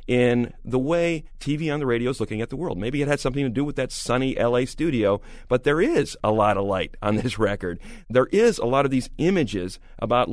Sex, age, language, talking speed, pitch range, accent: male, 40-59, English, 240 wpm, 110-145 Hz, American